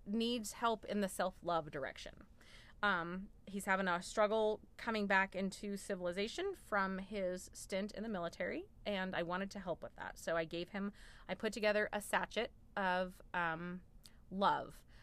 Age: 30-49